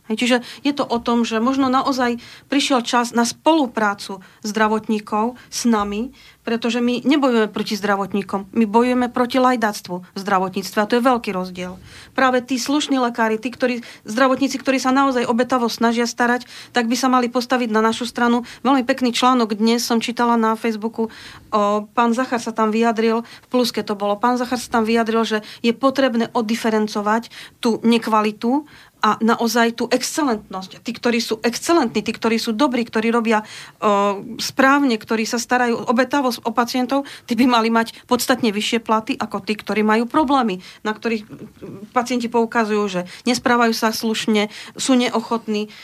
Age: 40-59